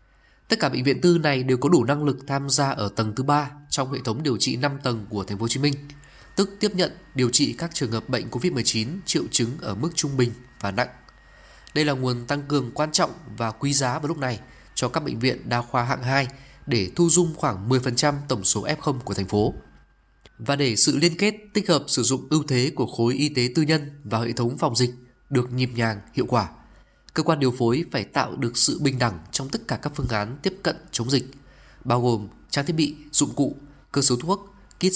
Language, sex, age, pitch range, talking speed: Vietnamese, male, 20-39, 120-150 Hz, 235 wpm